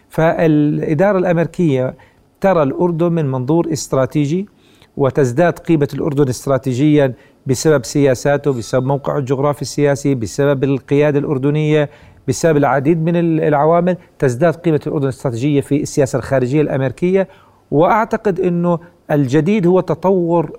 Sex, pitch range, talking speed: male, 135-155 Hz, 110 wpm